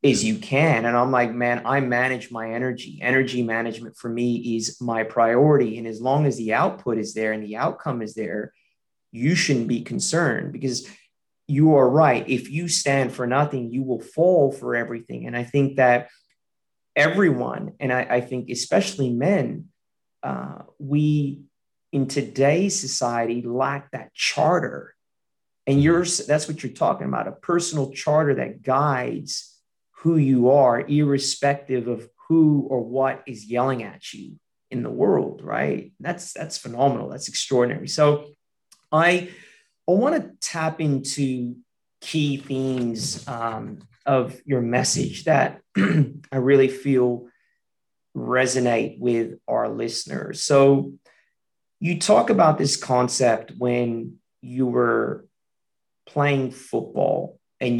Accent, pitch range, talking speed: American, 120-145 Hz, 140 wpm